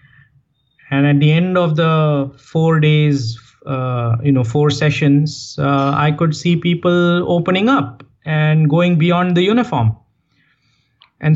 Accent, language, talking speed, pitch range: Indian, English, 135 wpm, 140-180 Hz